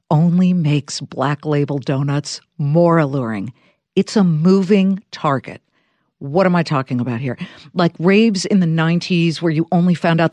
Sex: female